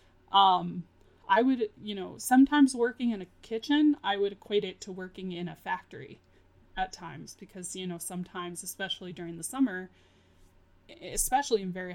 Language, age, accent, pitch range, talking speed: English, 20-39, American, 170-210 Hz, 160 wpm